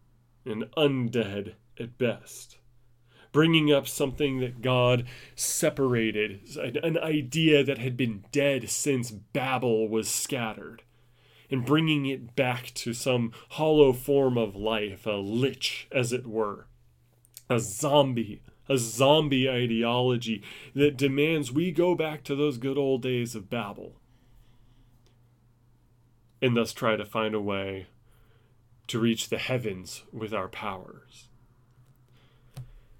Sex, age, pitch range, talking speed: male, 30-49, 115-130 Hz, 120 wpm